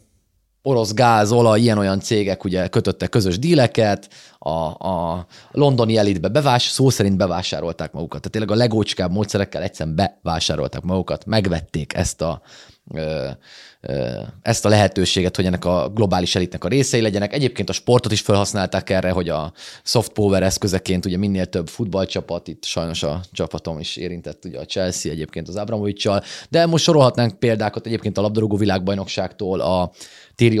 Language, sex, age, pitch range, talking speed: Hungarian, male, 30-49, 95-130 Hz, 150 wpm